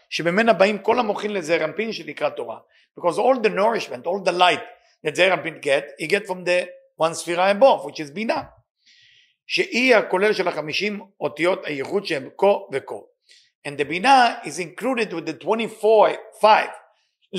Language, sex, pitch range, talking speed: English, male, 175-235 Hz, 95 wpm